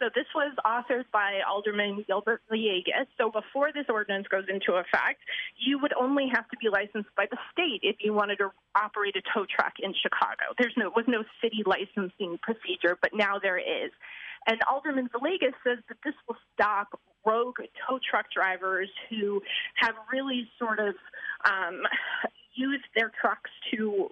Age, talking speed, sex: 30-49, 165 wpm, female